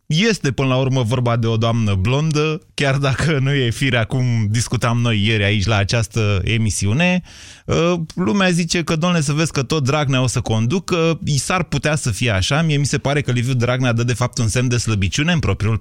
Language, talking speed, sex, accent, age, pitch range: Romanian, 215 wpm, male, native, 20-39, 105-140 Hz